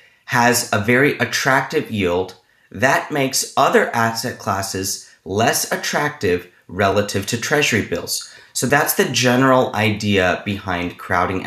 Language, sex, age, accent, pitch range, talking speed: English, male, 30-49, American, 100-135 Hz, 120 wpm